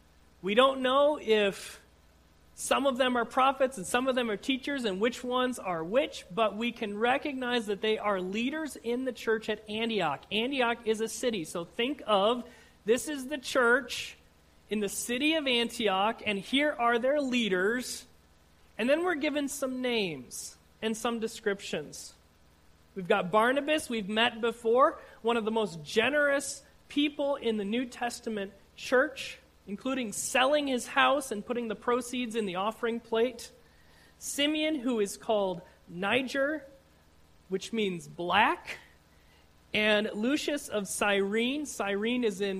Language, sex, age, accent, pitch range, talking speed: English, male, 40-59, American, 200-255 Hz, 150 wpm